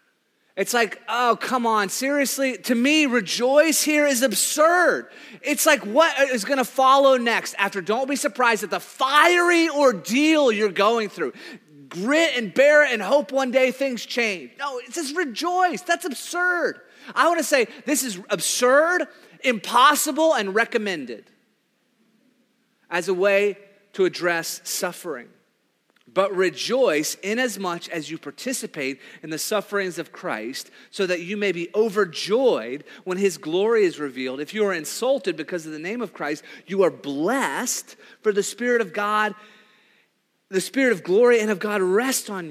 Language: English